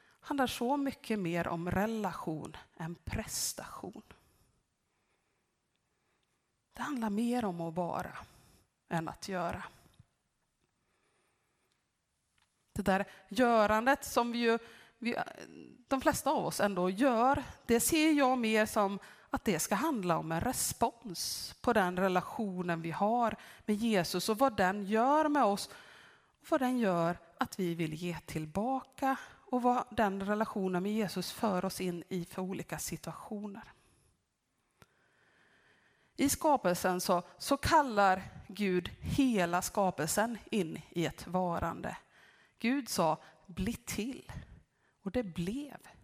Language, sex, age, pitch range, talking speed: Swedish, female, 30-49, 180-245 Hz, 125 wpm